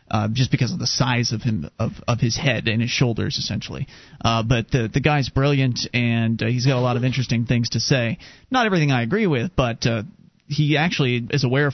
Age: 30-49